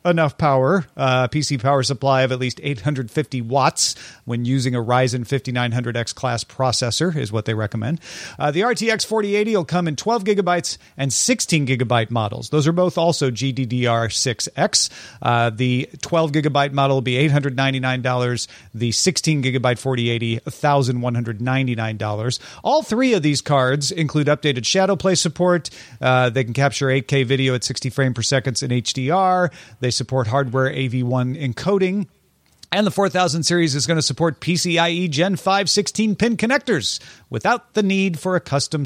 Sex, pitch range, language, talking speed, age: male, 125-175 Hz, English, 155 wpm, 40-59